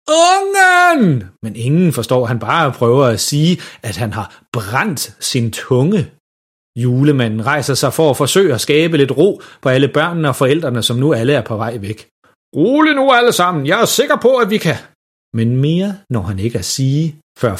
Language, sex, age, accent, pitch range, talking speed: Danish, male, 30-49, native, 115-155 Hz, 190 wpm